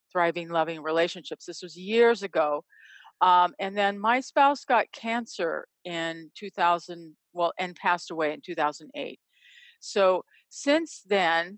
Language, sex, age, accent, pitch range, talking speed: English, female, 50-69, American, 175-225 Hz, 130 wpm